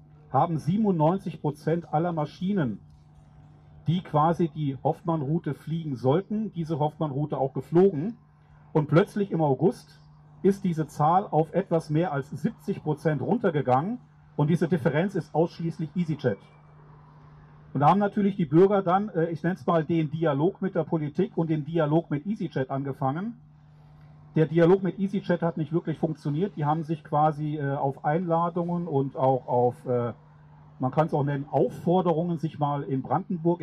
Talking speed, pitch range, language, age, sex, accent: 150 wpm, 150-175 Hz, German, 40-59, male, German